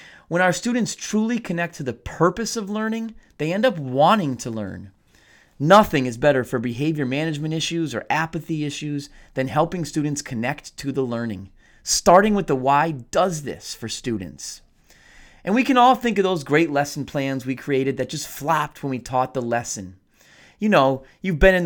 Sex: male